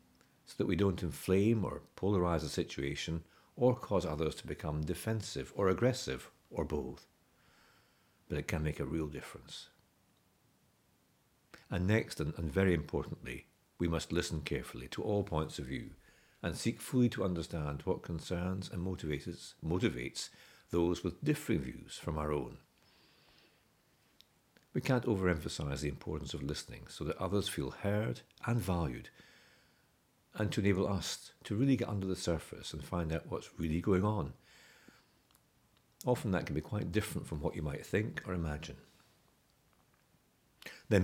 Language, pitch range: English, 80-100 Hz